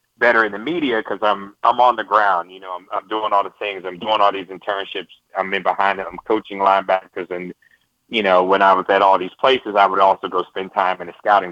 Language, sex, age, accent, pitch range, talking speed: English, male, 30-49, American, 95-105 Hz, 255 wpm